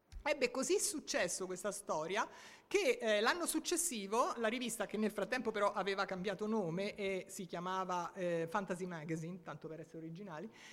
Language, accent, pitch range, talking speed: Italian, native, 185-255 Hz, 155 wpm